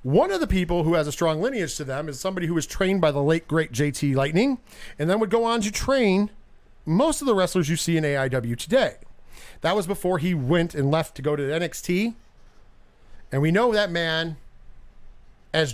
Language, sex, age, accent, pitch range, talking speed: English, male, 40-59, American, 140-205 Hz, 210 wpm